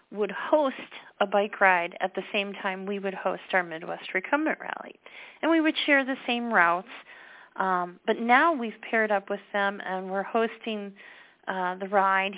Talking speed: 180 wpm